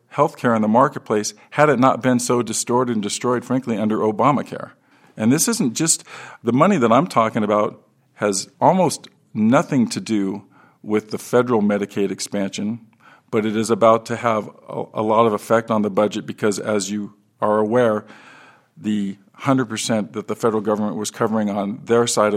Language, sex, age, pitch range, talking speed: English, male, 50-69, 105-125 Hz, 170 wpm